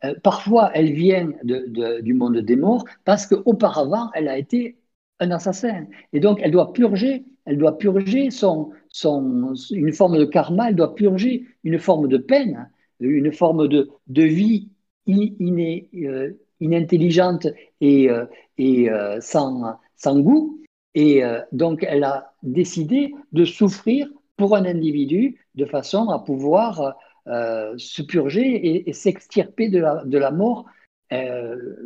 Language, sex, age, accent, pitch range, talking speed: French, male, 50-69, French, 130-195 Hz, 140 wpm